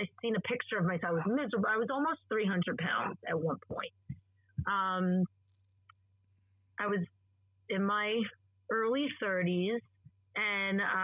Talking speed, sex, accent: 130 wpm, female, American